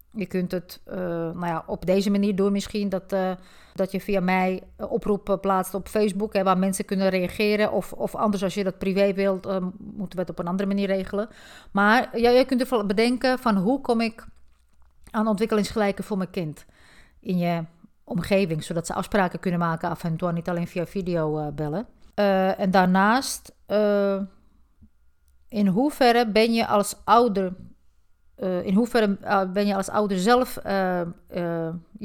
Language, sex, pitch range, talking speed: Dutch, female, 180-210 Hz, 180 wpm